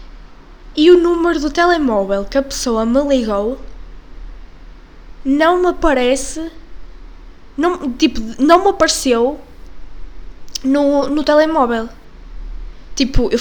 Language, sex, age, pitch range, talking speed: Portuguese, female, 10-29, 225-300 Hz, 100 wpm